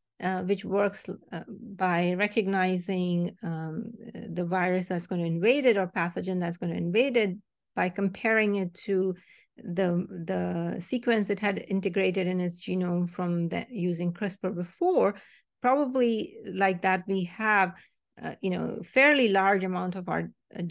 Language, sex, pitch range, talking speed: English, female, 180-220 Hz, 155 wpm